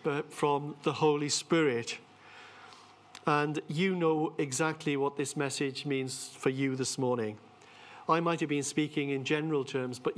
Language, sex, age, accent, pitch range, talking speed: English, male, 50-69, British, 130-150 Hz, 145 wpm